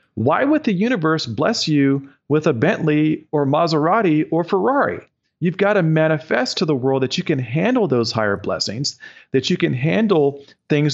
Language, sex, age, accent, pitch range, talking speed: English, male, 40-59, American, 115-150 Hz, 175 wpm